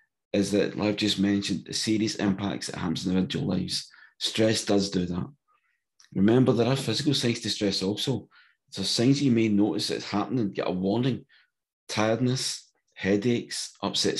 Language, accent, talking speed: English, British, 165 wpm